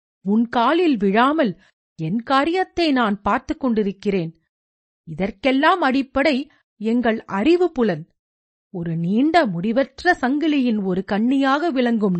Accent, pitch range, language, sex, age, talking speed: native, 205-295 Hz, Tamil, female, 50-69, 100 wpm